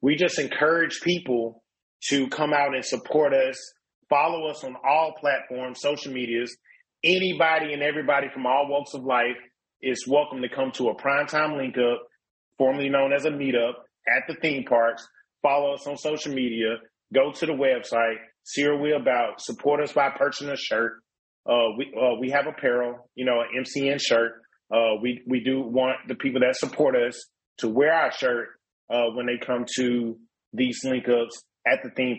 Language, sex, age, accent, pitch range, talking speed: English, male, 30-49, American, 125-145 Hz, 180 wpm